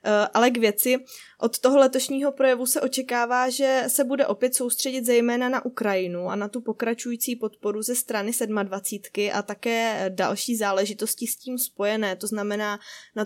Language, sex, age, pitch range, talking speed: Czech, female, 20-39, 210-245 Hz, 160 wpm